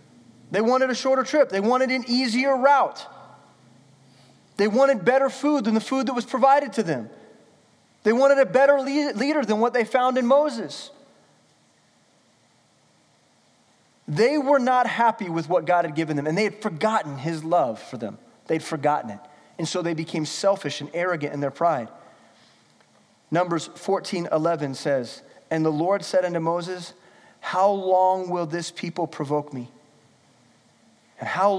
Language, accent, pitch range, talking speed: English, American, 150-210 Hz, 155 wpm